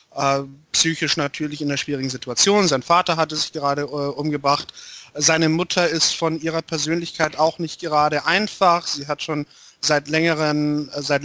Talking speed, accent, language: 150 wpm, German, German